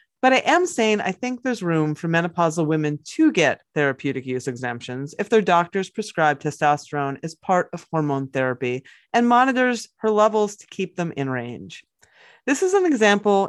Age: 30-49